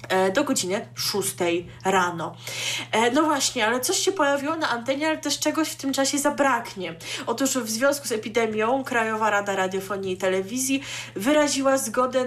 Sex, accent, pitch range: female, native, 190-250 Hz